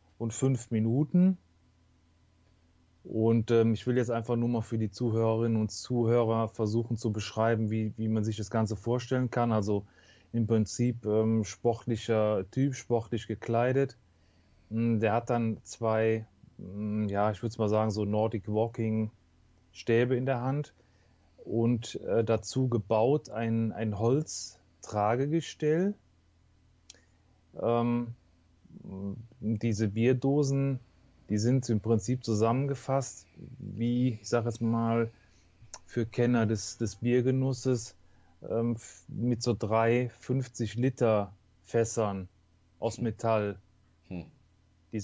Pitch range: 100-120 Hz